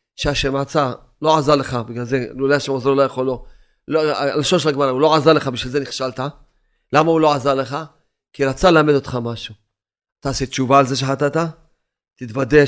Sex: male